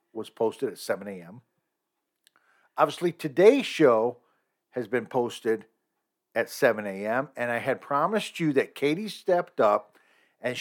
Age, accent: 50-69, American